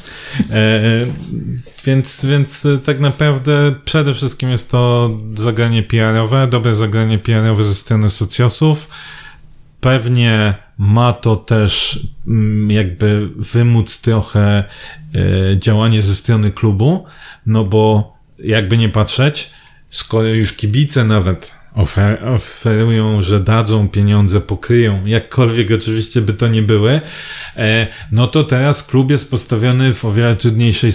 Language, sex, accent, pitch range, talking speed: Polish, male, native, 105-135 Hz, 120 wpm